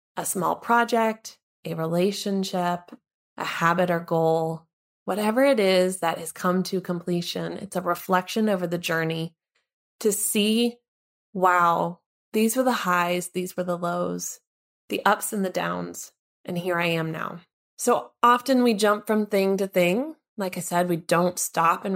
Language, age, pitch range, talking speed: English, 20-39, 175-210 Hz, 160 wpm